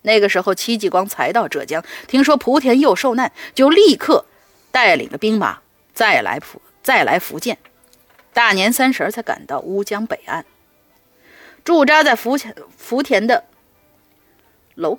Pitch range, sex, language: 200-285 Hz, female, Chinese